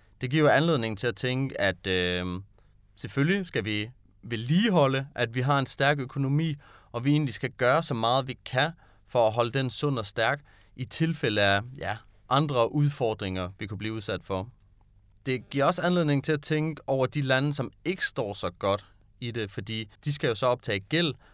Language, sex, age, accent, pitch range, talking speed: Danish, male, 30-49, native, 105-145 Hz, 190 wpm